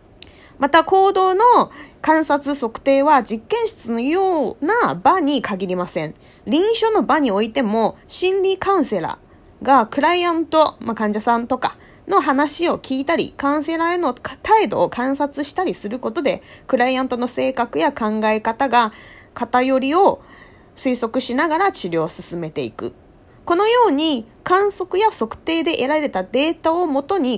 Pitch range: 235-355 Hz